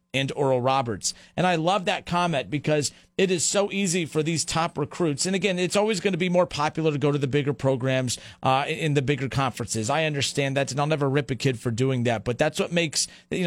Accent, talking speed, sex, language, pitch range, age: American, 240 wpm, male, English, 140-170 Hz, 40-59